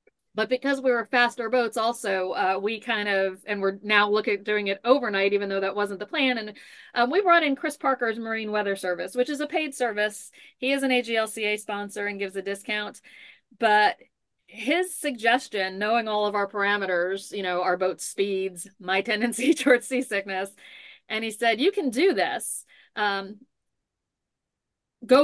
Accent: American